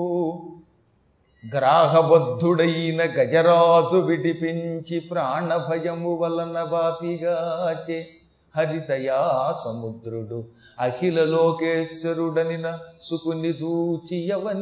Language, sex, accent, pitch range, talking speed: Telugu, male, native, 160-195 Hz, 40 wpm